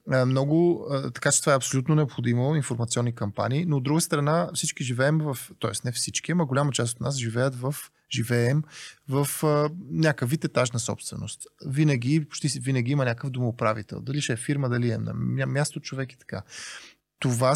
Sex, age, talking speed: male, 20-39, 170 wpm